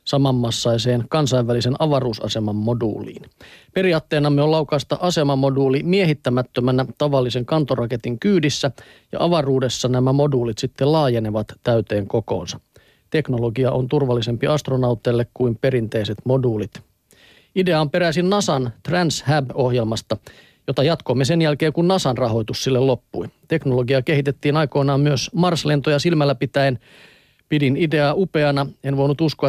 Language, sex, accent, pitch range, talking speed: Finnish, male, native, 120-145 Hz, 110 wpm